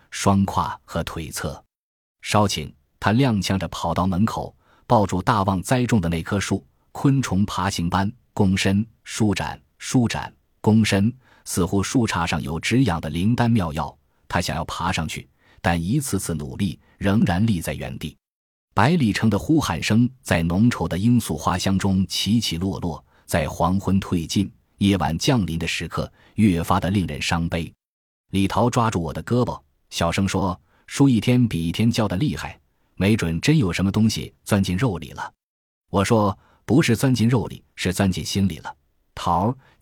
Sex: male